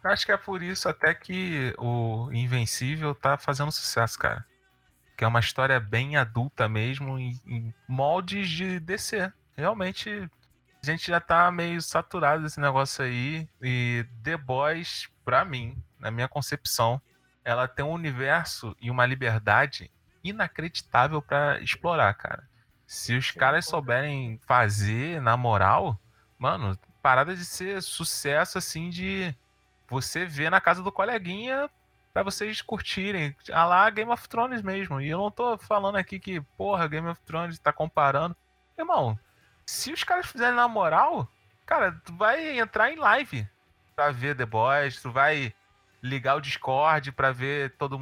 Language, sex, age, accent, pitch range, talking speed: Portuguese, male, 20-39, Brazilian, 120-175 Hz, 150 wpm